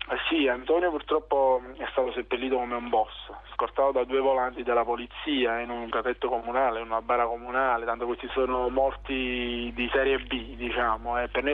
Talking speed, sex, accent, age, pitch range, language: 180 wpm, male, native, 20-39, 120-135 Hz, Italian